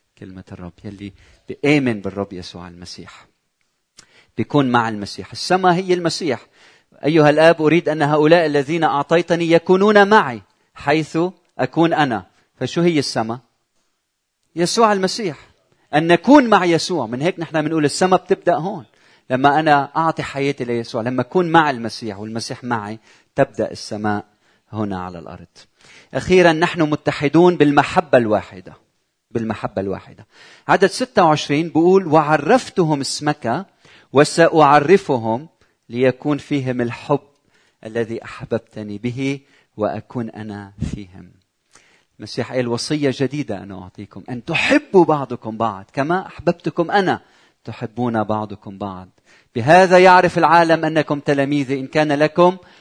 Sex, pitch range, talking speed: male, 115-165 Hz, 115 wpm